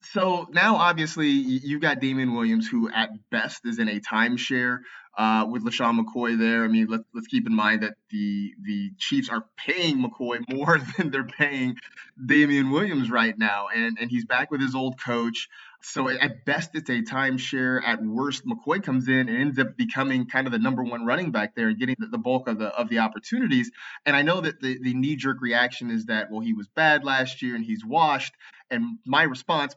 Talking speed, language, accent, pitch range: 210 wpm, English, American, 115-155 Hz